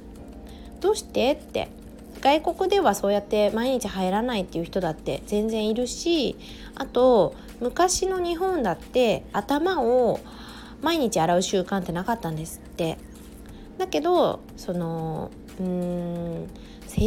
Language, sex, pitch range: Japanese, female, 190-255 Hz